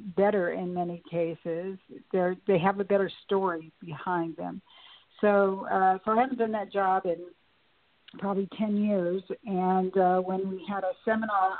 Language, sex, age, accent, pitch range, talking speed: English, female, 60-79, American, 170-195 Hz, 160 wpm